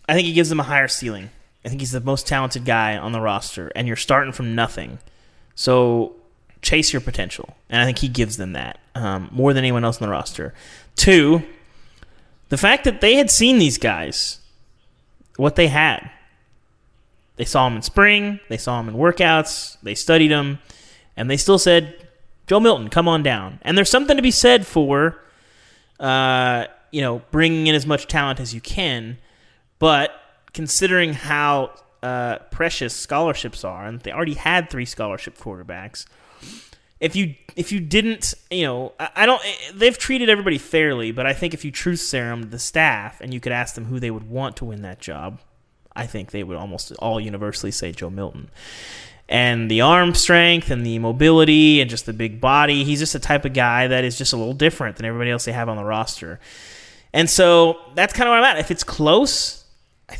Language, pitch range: English, 115-165 Hz